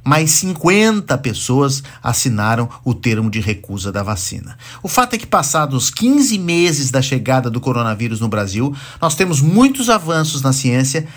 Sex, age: male, 50-69